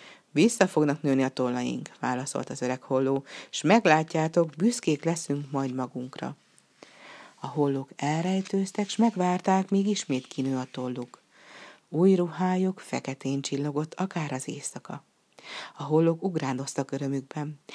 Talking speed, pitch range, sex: 120 wpm, 135-170 Hz, female